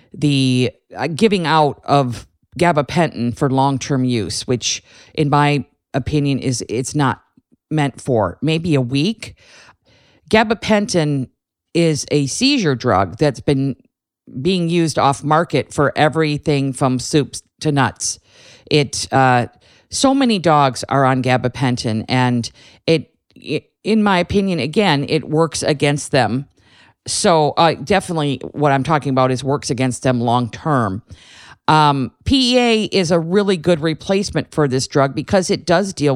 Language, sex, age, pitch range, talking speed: English, female, 40-59, 130-170 Hz, 140 wpm